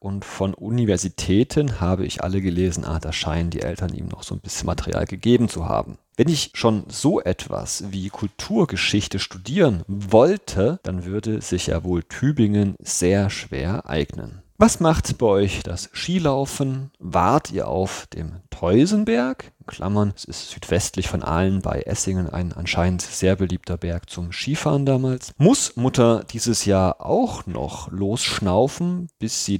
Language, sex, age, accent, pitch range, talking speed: German, male, 40-59, German, 90-110 Hz, 150 wpm